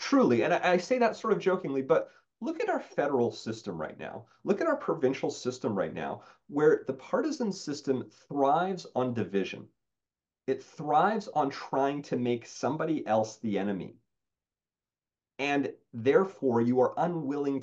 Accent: American